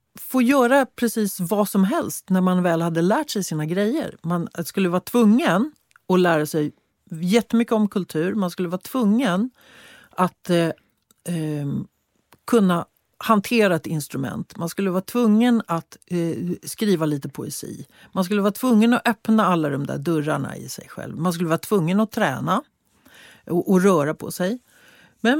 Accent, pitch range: native, 170-240 Hz